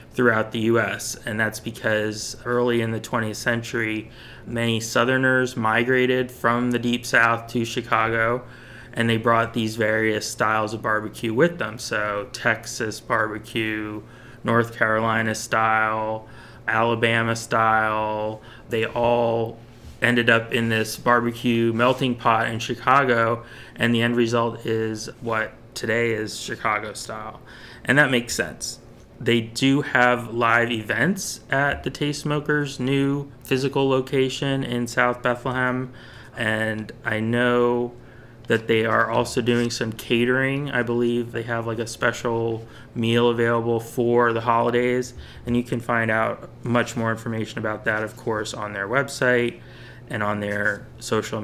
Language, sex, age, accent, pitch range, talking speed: English, male, 20-39, American, 110-120 Hz, 140 wpm